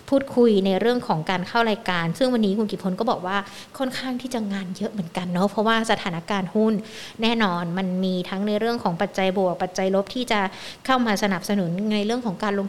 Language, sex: Thai, female